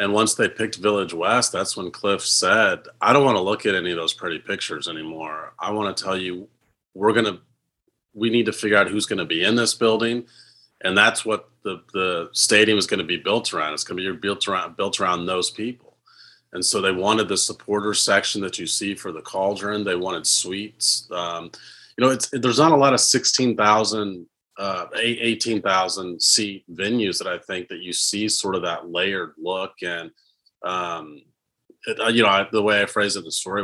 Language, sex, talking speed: English, male, 210 wpm